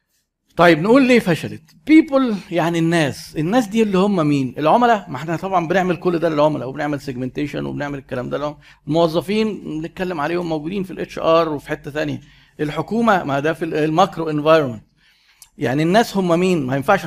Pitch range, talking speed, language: 140-180 Hz, 170 wpm, Arabic